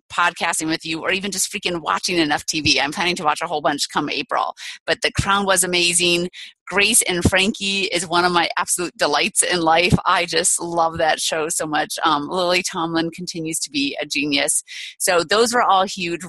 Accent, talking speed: American, 205 wpm